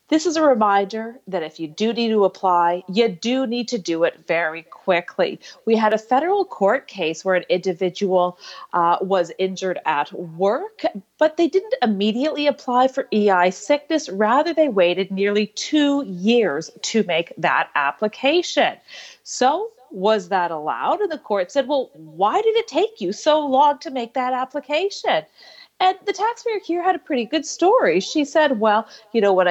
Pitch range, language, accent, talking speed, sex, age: 185-295 Hz, English, American, 175 wpm, female, 40-59